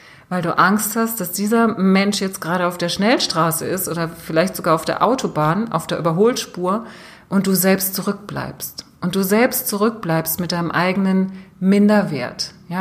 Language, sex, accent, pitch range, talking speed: German, female, German, 170-205 Hz, 165 wpm